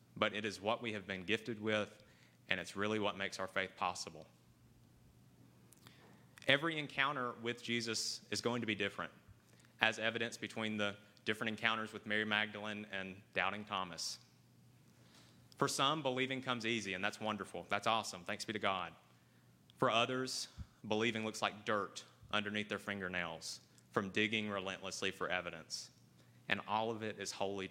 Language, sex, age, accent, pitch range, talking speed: English, male, 30-49, American, 100-120 Hz, 155 wpm